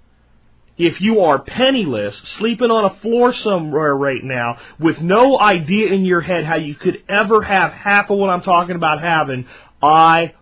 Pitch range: 130-195 Hz